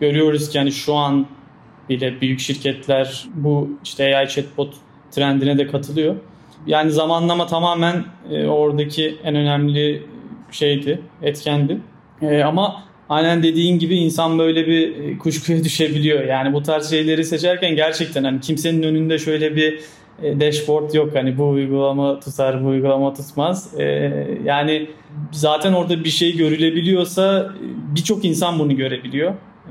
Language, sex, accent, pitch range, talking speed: Turkish, male, native, 140-160 Hz, 125 wpm